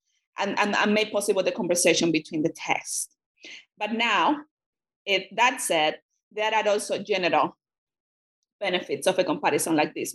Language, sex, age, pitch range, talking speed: English, female, 30-49, 175-215 Hz, 150 wpm